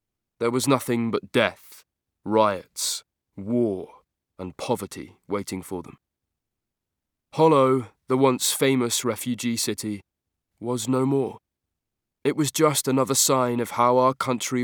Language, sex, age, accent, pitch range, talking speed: English, male, 20-39, British, 105-125 Hz, 125 wpm